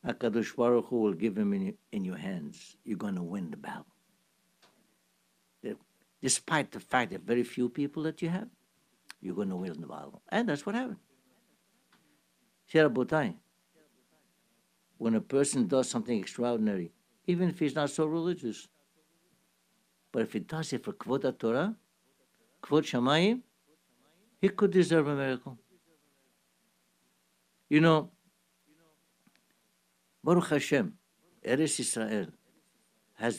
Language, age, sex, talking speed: English, 60-79, male, 125 wpm